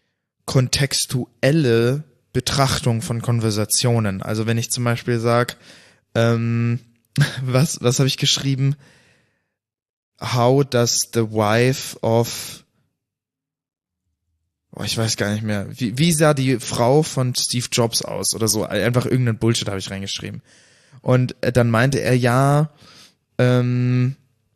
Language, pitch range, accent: German, 115-140 Hz, German